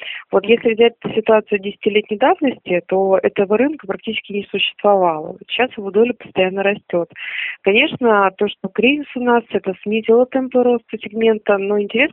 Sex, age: female, 20-39